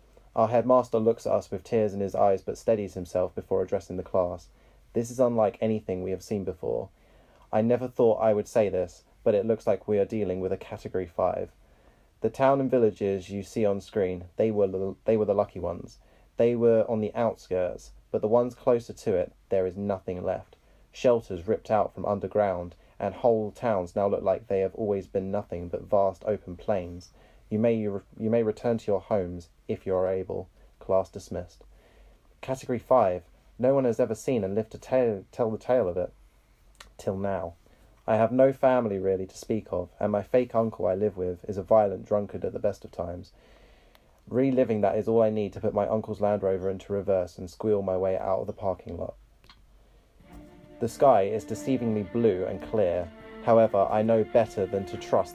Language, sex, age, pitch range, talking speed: English, male, 20-39, 95-110 Hz, 200 wpm